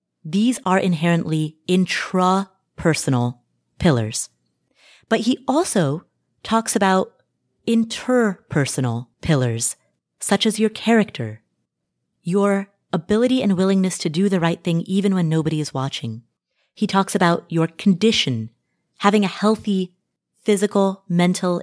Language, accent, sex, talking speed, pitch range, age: English, American, female, 110 wpm, 150-205 Hz, 30-49